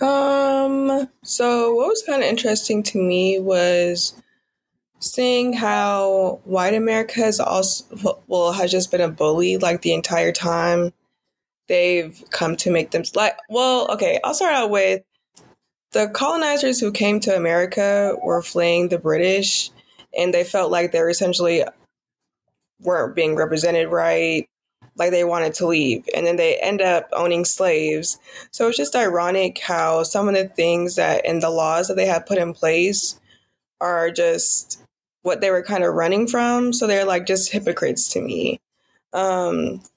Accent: American